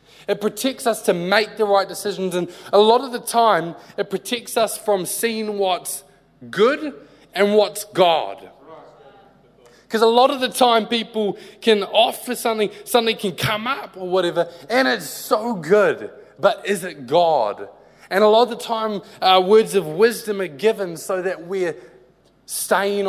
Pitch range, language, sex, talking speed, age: 170-230 Hz, English, male, 165 wpm, 20-39